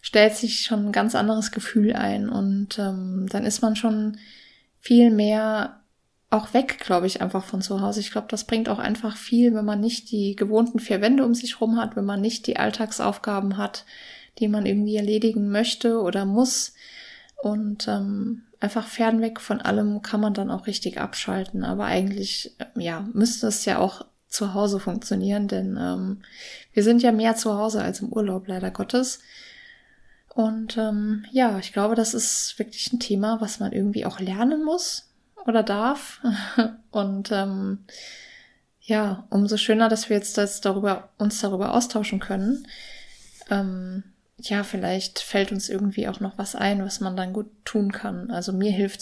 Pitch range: 200-225 Hz